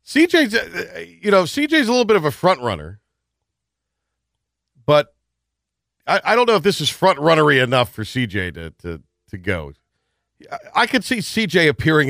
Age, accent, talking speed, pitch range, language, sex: 50-69, American, 165 wpm, 100-165 Hz, English, male